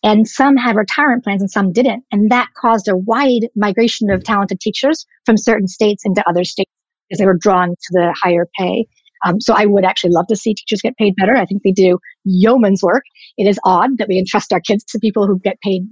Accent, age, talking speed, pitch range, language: American, 50-69, 235 wpm, 190-230 Hz, English